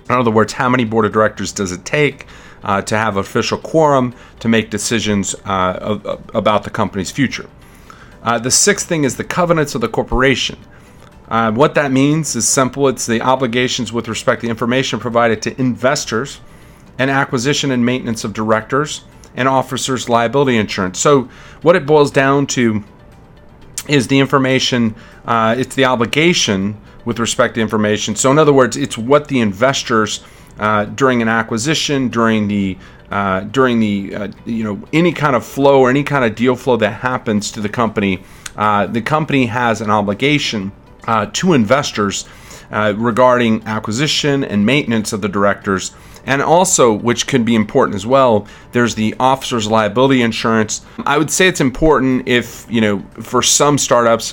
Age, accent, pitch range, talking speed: 40-59, American, 110-135 Hz, 170 wpm